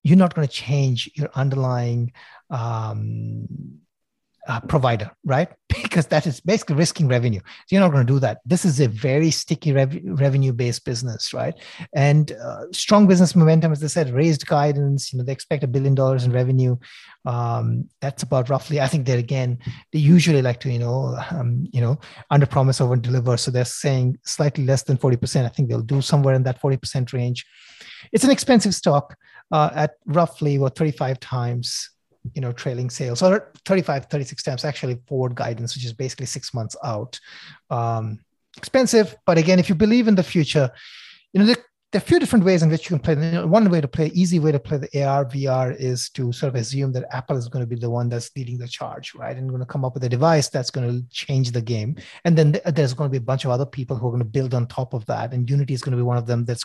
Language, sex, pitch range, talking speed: English, male, 125-160 Hz, 225 wpm